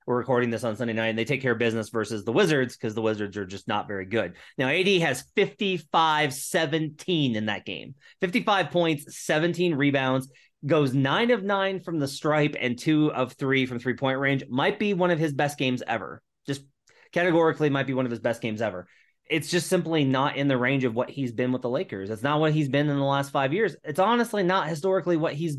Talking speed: 225 wpm